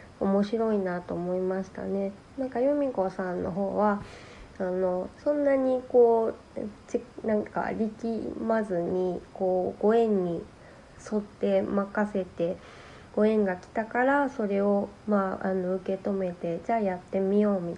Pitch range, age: 180-220 Hz, 20-39